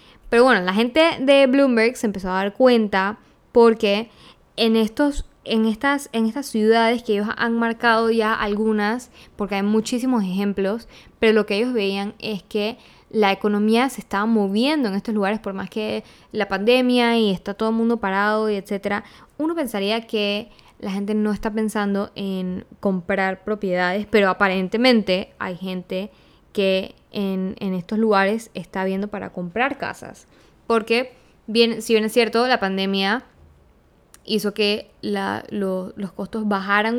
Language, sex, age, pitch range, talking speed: Spanish, female, 10-29, 195-225 Hz, 155 wpm